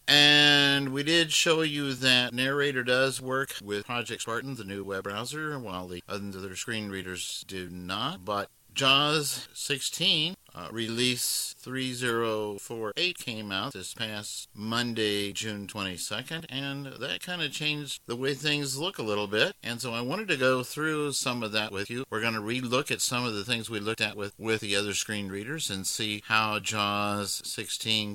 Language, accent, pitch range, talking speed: English, American, 100-125 Hz, 175 wpm